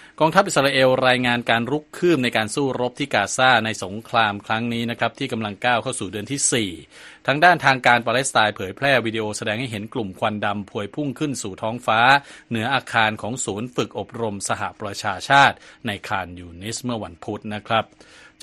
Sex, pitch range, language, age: male, 105-130 Hz, Thai, 20-39